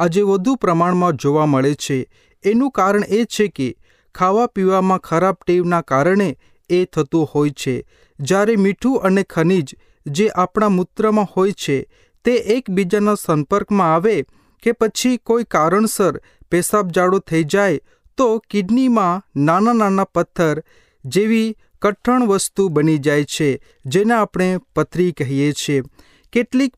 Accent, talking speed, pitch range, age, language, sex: native, 105 wpm, 155-210 Hz, 30-49, Hindi, male